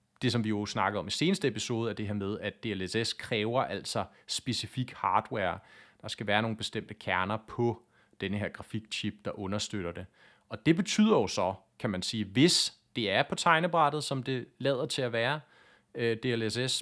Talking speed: 185 wpm